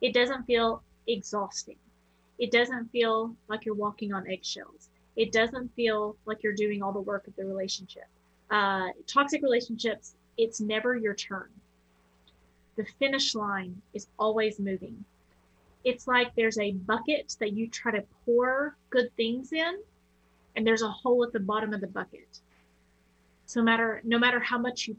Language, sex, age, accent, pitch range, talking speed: English, female, 30-49, American, 200-245 Hz, 165 wpm